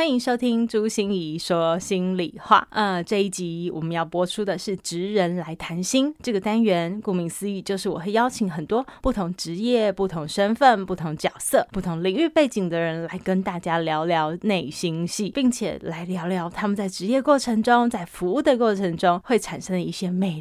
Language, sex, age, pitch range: Chinese, female, 20-39, 180-225 Hz